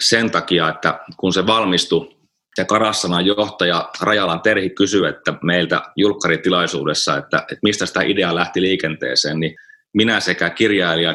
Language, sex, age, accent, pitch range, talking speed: Finnish, male, 30-49, native, 85-100 Hz, 135 wpm